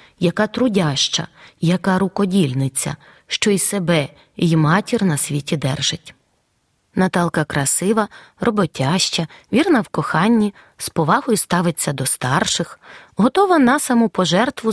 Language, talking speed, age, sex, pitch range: Ukrainian, 105 wpm, 20-39, female, 170-235 Hz